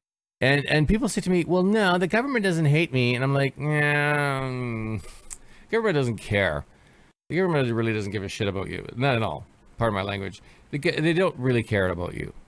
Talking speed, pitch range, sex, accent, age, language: 210 wpm, 100-145 Hz, male, American, 40-59, English